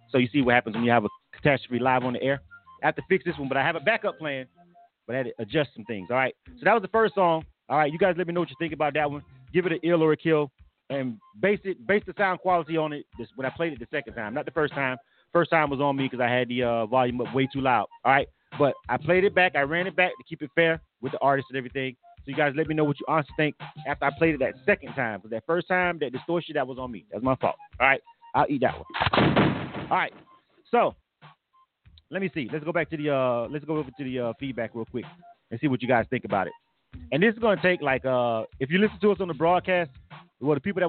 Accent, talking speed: American, 290 wpm